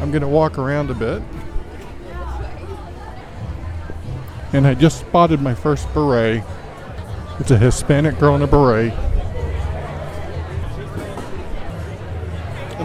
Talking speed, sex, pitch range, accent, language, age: 105 wpm, male, 95-140 Hz, American, English, 50-69